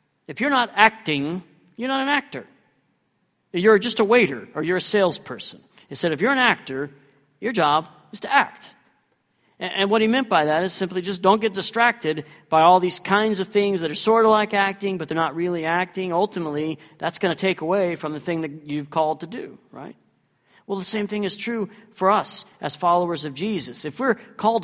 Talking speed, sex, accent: 210 wpm, male, American